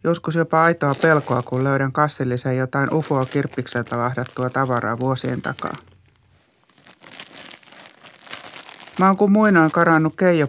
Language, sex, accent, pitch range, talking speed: Finnish, male, native, 130-175 Hz, 115 wpm